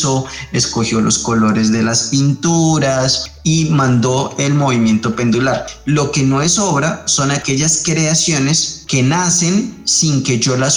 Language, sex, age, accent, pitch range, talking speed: Spanish, male, 20-39, Colombian, 120-145 Hz, 140 wpm